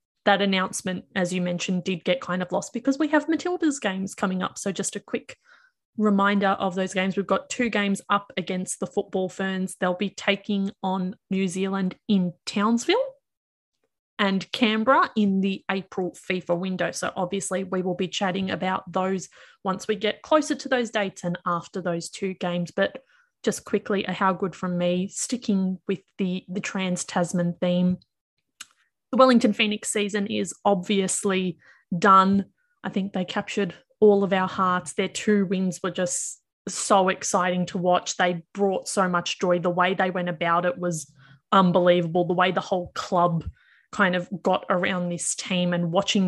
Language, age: English, 20-39